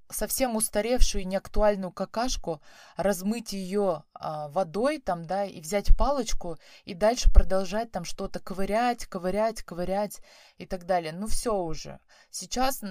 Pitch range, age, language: 170-210 Hz, 20-39, Russian